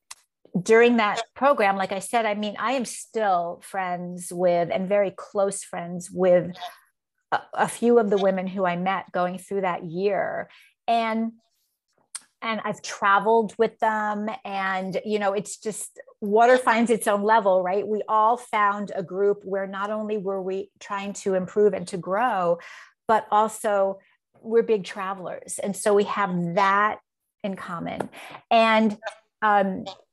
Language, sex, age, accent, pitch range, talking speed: English, female, 30-49, American, 190-225 Hz, 155 wpm